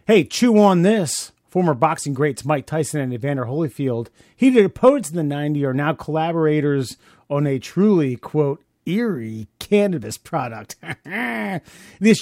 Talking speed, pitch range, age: 140 wpm, 130-185 Hz, 30-49